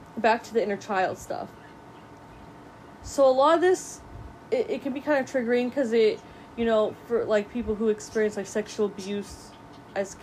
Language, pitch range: English, 185-230 Hz